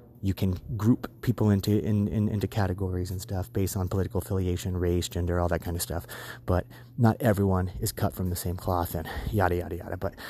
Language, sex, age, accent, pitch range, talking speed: English, male, 30-49, American, 100-120 Hz, 210 wpm